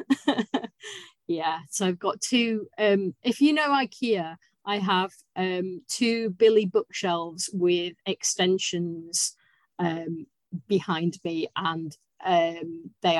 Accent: British